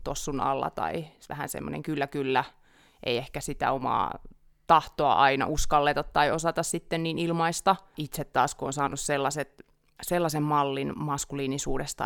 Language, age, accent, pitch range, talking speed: Finnish, 30-49, native, 140-155 Hz, 135 wpm